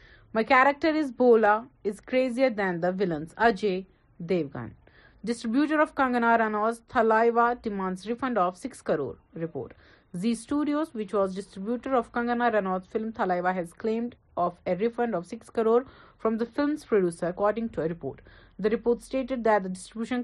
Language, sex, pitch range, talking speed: Urdu, female, 190-245 Hz, 160 wpm